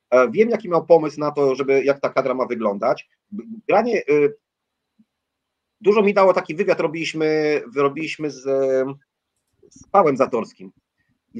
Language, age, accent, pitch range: Polish, 30-49, native, 140-180 Hz